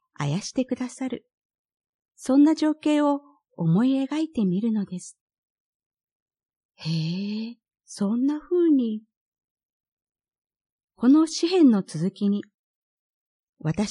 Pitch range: 190-270 Hz